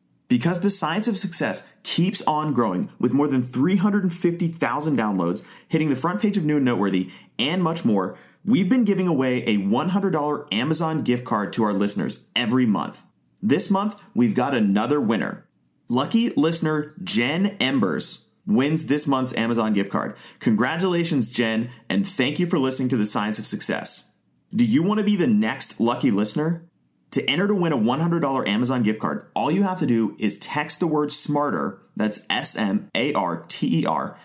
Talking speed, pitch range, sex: 170 wpm, 125-190 Hz, male